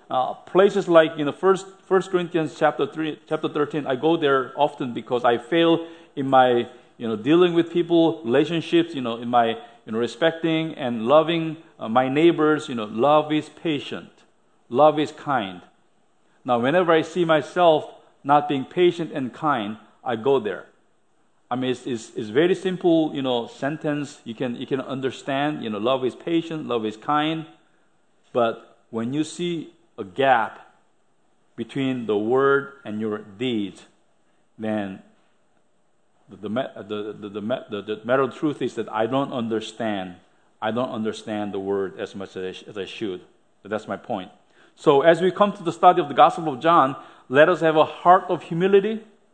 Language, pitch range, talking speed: English, 120-165 Hz, 180 wpm